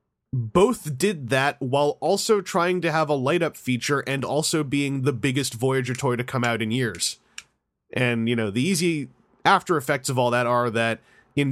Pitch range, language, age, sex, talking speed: 125-160 Hz, English, 30-49, male, 180 wpm